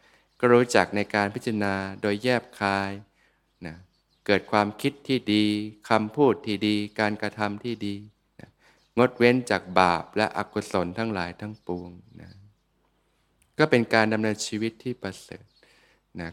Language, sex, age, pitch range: Thai, male, 20-39, 95-110 Hz